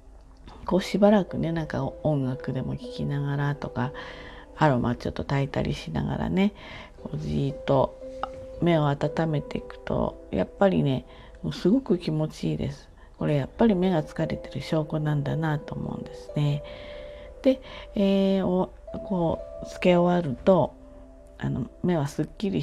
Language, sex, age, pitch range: Japanese, female, 40-59, 140-195 Hz